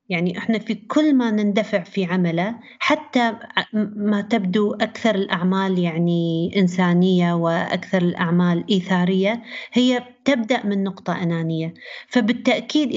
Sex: female